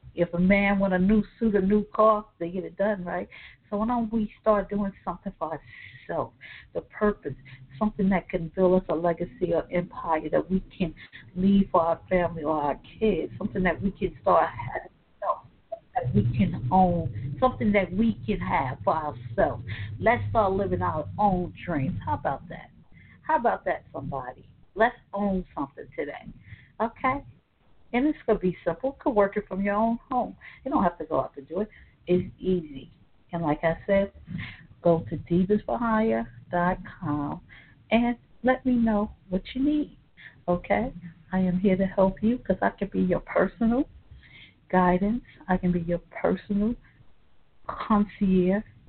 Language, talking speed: English, 170 wpm